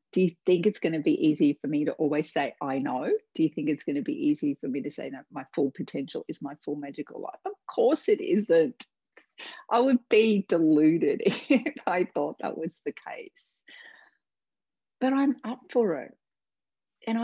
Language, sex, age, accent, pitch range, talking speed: English, female, 40-59, Australian, 175-255 Hz, 200 wpm